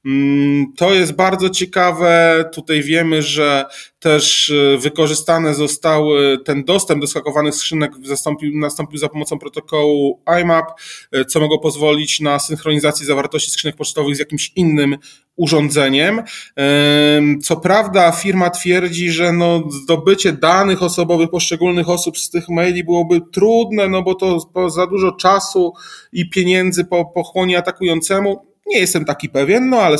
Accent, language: native, Polish